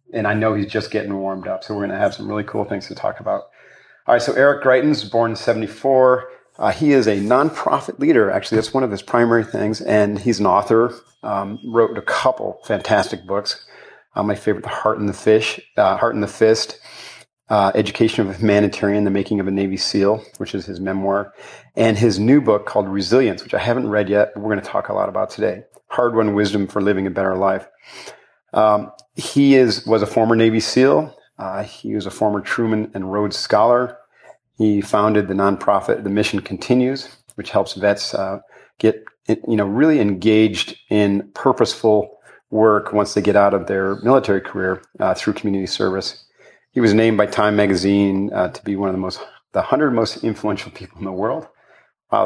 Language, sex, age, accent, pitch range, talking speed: English, male, 40-59, American, 100-115 Hz, 205 wpm